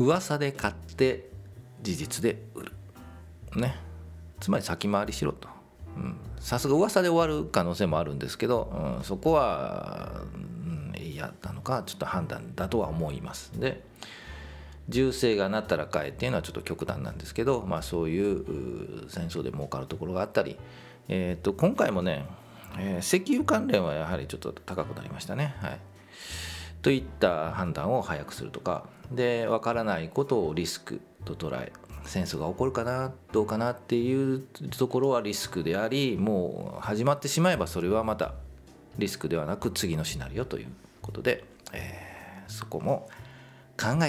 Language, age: Japanese, 40-59